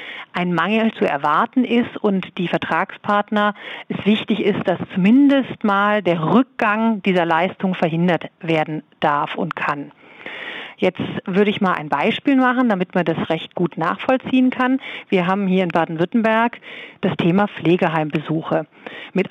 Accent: German